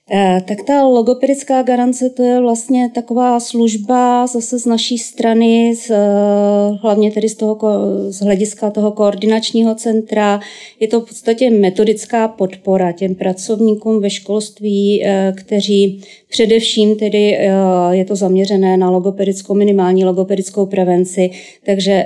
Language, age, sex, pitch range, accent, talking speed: Czech, 30-49, female, 195-225 Hz, native, 120 wpm